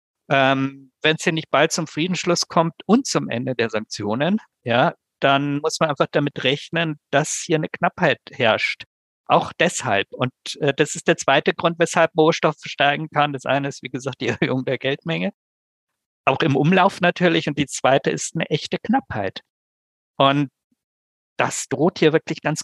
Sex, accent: male, German